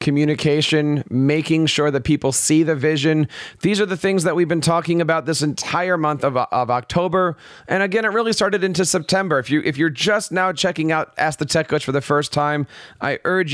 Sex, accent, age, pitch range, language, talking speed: male, American, 40-59, 145-175 Hz, English, 210 wpm